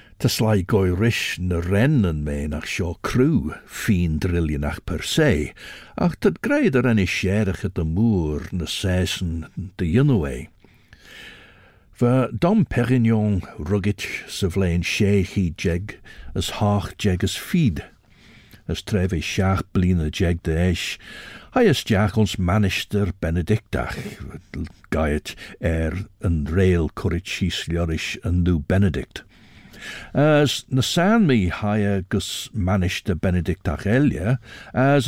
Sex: male